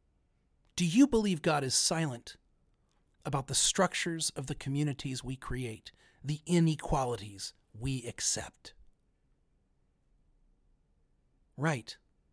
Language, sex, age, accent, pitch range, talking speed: English, male, 40-59, American, 110-175 Hz, 95 wpm